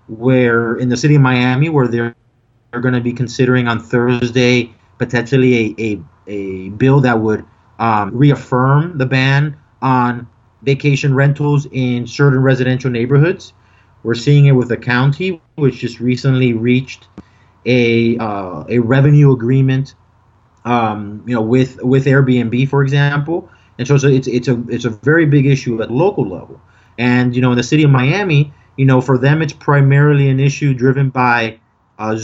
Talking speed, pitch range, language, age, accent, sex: 165 wpm, 115-140 Hz, English, 30-49, American, male